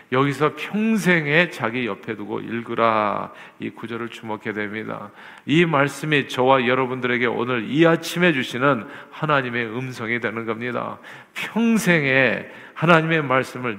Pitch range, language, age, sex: 115-145 Hz, Korean, 40-59, male